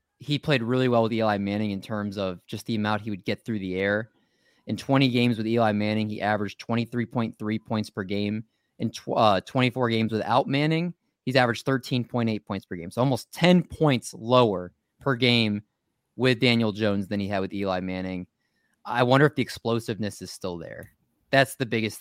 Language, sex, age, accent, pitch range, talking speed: English, male, 20-39, American, 105-125 Hz, 190 wpm